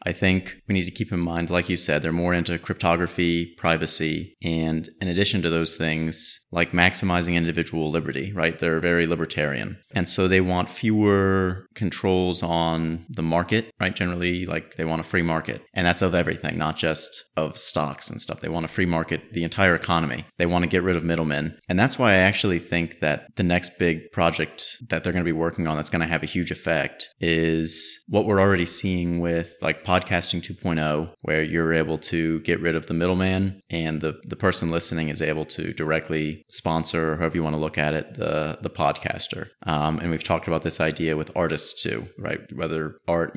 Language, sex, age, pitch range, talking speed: English, male, 30-49, 80-90 Hz, 205 wpm